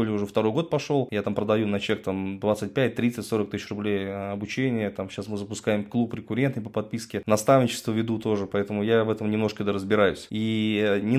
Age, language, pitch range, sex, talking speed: 20-39, Russian, 105-135 Hz, male, 175 wpm